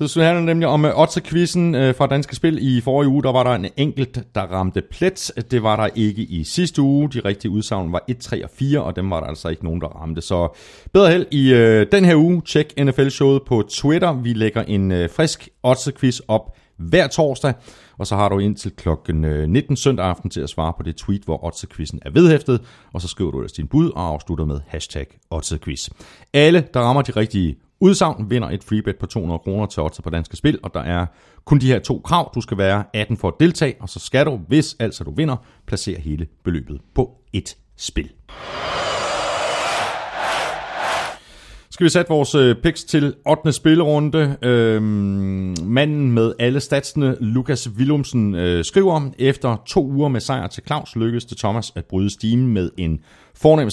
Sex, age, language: male, 30-49, Danish